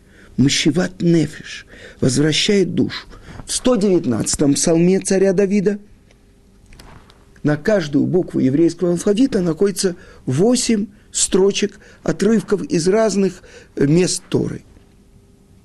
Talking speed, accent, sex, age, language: 90 wpm, native, male, 50-69, Russian